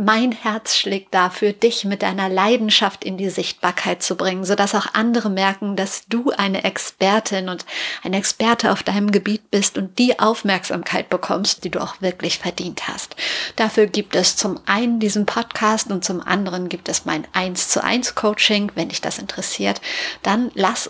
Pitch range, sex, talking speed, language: 190-225 Hz, female, 175 wpm, German